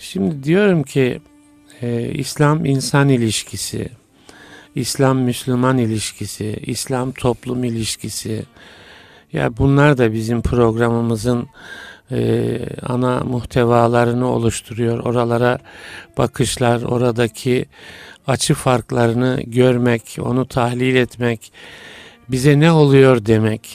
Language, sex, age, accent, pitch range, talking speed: Turkish, male, 50-69, native, 120-135 Hz, 85 wpm